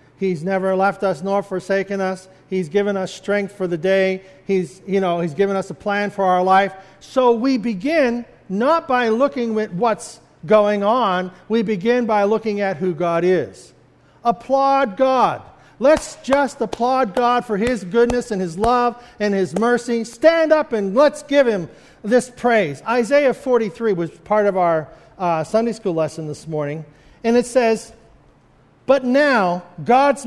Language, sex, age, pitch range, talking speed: English, male, 50-69, 185-245 Hz, 165 wpm